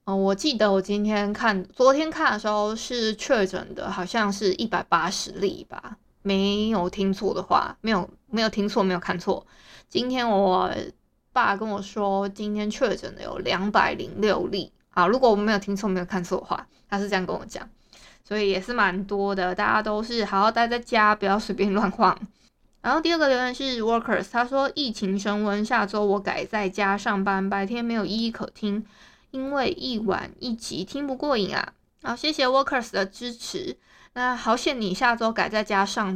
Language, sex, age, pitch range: Chinese, female, 20-39, 195-235 Hz